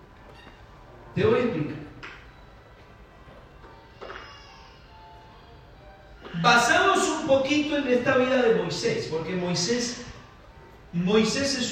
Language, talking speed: Spanish, 80 wpm